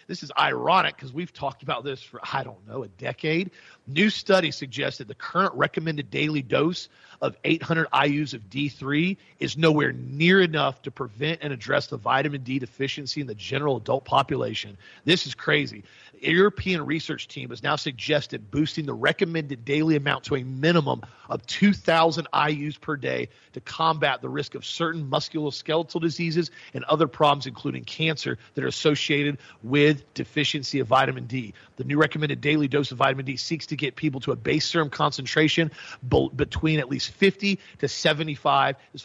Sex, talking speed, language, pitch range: male, 170 wpm, English, 135-160 Hz